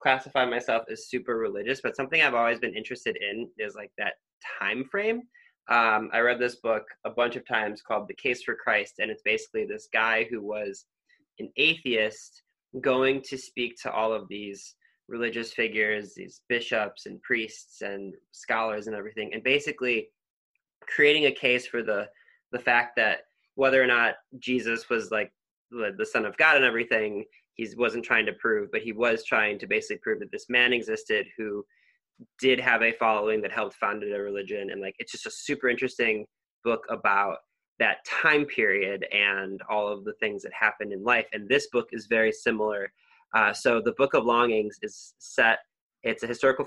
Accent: American